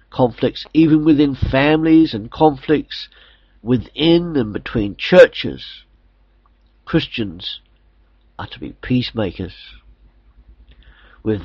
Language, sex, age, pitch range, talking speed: English, male, 50-69, 85-140 Hz, 85 wpm